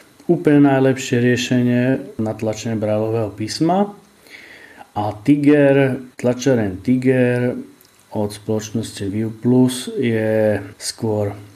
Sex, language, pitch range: male, Slovak, 105-120 Hz